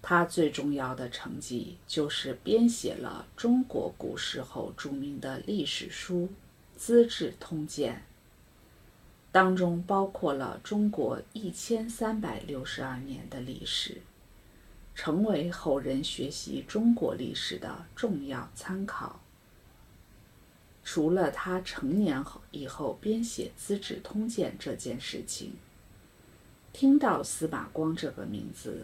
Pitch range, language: 145-220 Hz, English